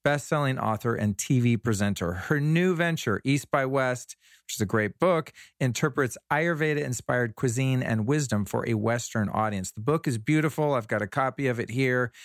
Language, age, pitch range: English, 40-59, 105-135 Hz